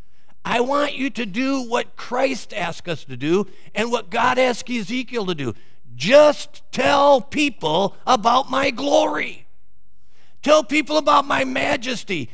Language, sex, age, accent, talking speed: English, male, 50-69, American, 140 wpm